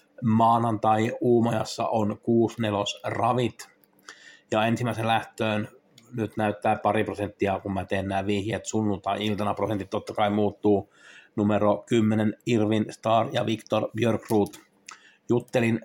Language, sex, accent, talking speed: Finnish, male, native, 115 wpm